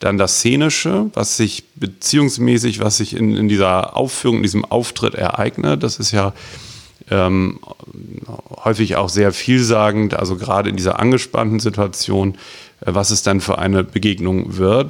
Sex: male